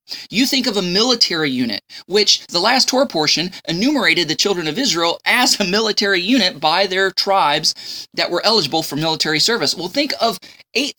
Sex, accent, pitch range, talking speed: male, American, 165-220 Hz, 180 wpm